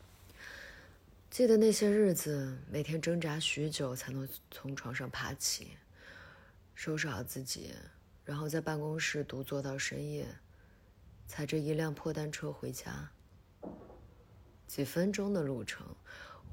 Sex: female